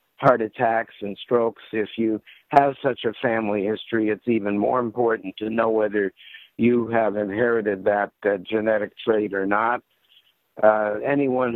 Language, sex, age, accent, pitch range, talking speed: English, male, 60-79, American, 110-125 Hz, 150 wpm